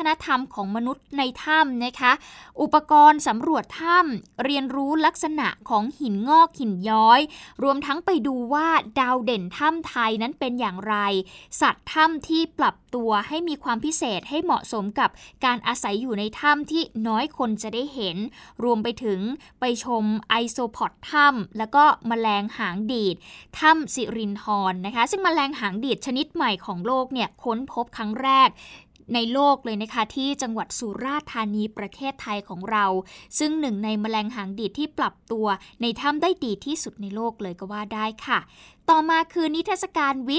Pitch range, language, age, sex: 215-290 Hz, Thai, 20-39, female